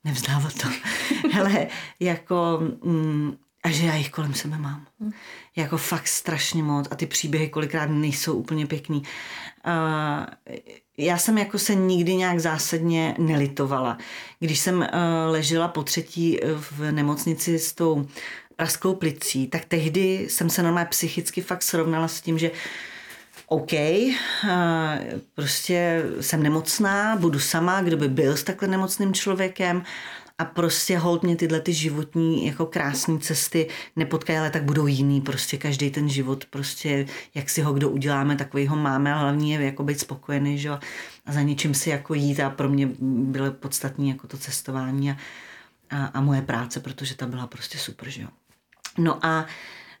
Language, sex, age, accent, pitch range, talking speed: Czech, female, 40-59, native, 140-170 Hz, 155 wpm